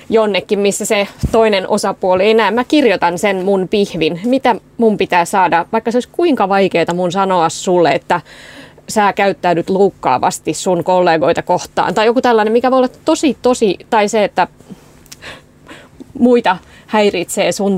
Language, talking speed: Finnish, 150 wpm